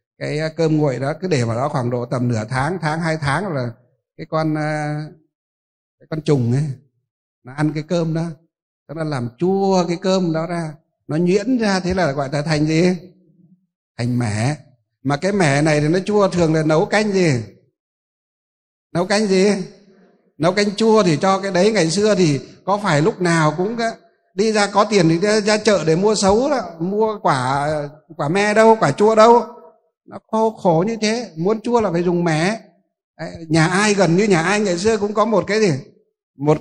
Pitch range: 150-195 Hz